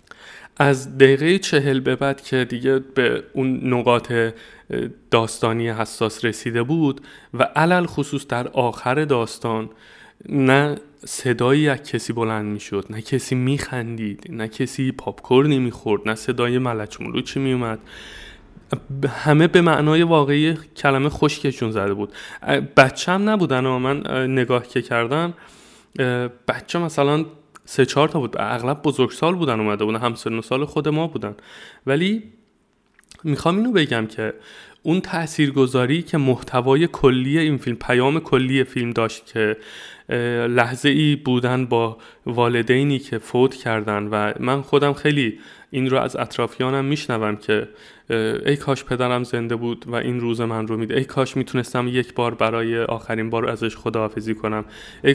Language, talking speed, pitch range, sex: Persian, 145 wpm, 115-145 Hz, male